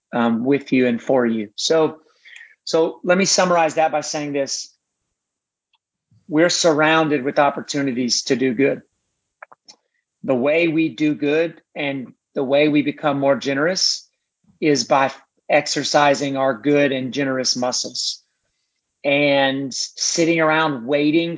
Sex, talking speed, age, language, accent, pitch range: male, 130 wpm, 30-49, English, American, 140-165 Hz